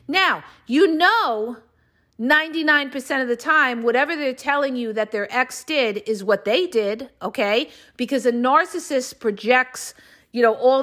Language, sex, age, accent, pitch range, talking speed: English, female, 50-69, American, 235-330 Hz, 150 wpm